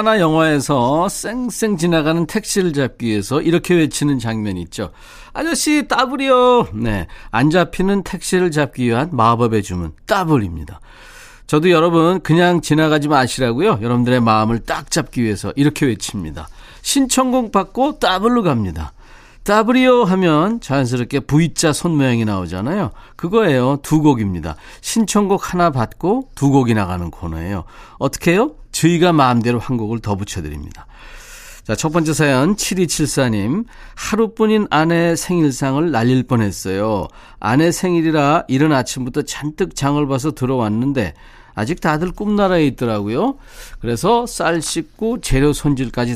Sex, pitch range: male, 120-175 Hz